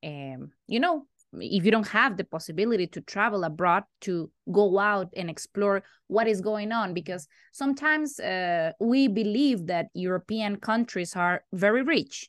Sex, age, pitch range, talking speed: female, 20-39, 180-220 Hz, 155 wpm